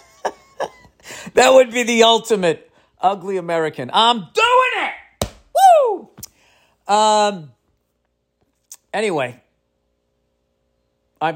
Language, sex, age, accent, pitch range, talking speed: English, male, 40-59, American, 115-190 Hz, 75 wpm